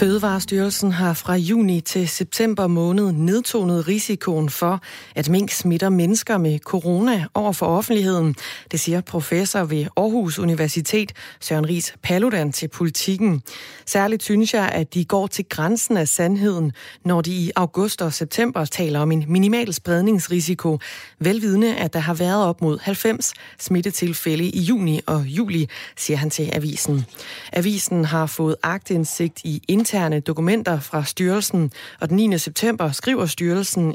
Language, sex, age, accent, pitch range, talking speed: Danish, female, 30-49, native, 160-195 Hz, 145 wpm